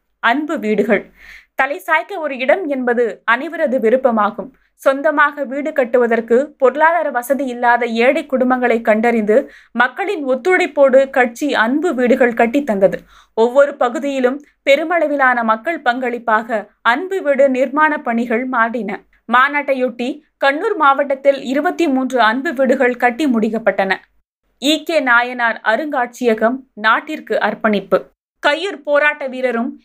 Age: 20-39